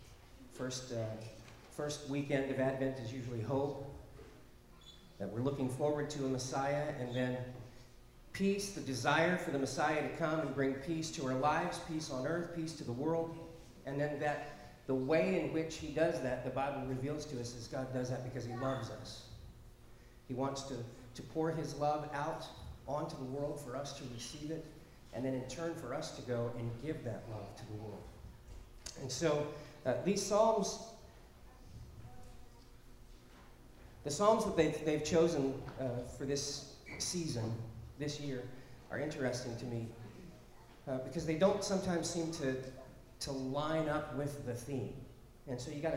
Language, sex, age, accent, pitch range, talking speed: English, male, 40-59, American, 125-150 Hz, 170 wpm